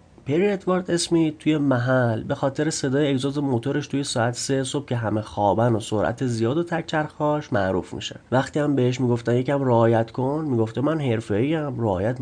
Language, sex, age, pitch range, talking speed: Persian, male, 30-49, 115-150 Hz, 170 wpm